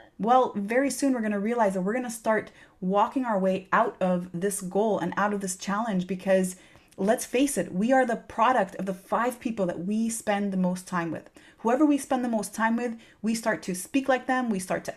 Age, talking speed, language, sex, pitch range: 30-49, 230 wpm, English, female, 185-225 Hz